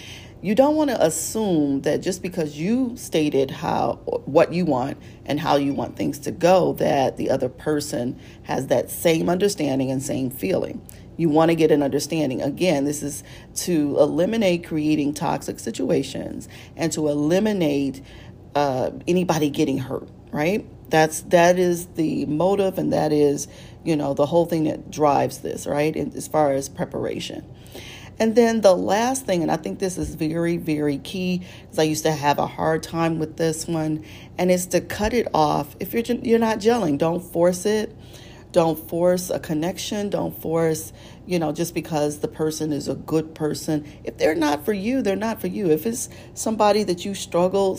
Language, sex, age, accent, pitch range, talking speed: English, female, 40-59, American, 145-180 Hz, 180 wpm